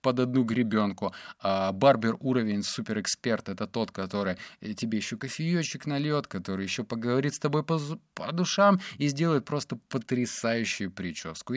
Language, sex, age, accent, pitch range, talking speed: Russian, male, 20-39, native, 100-130 Hz, 135 wpm